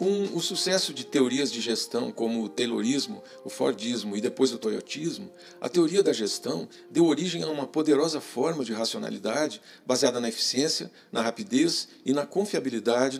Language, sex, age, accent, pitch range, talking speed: Portuguese, male, 50-69, Brazilian, 130-200 Hz, 165 wpm